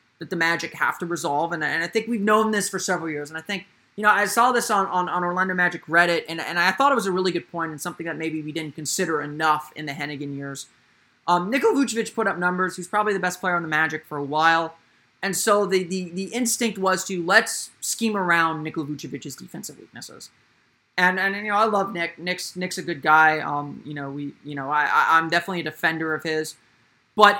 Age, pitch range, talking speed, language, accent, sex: 20-39, 160-195 Hz, 245 wpm, English, American, male